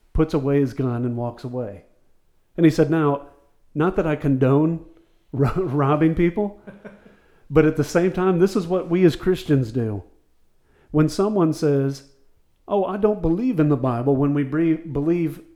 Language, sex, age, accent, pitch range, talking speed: English, male, 40-59, American, 140-175 Hz, 155 wpm